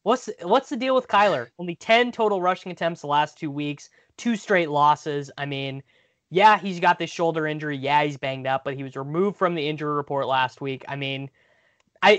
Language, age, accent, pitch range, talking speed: English, 20-39, American, 140-180 Hz, 210 wpm